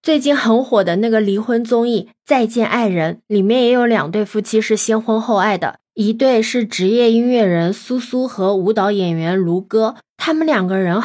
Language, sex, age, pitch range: Chinese, female, 20-39, 190-245 Hz